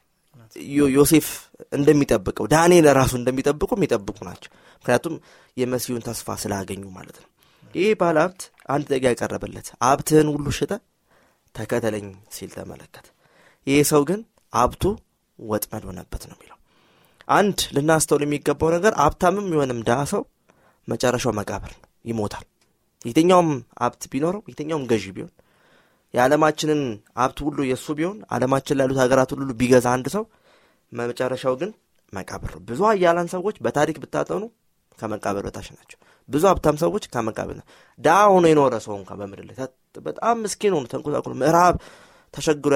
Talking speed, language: 115 wpm, Amharic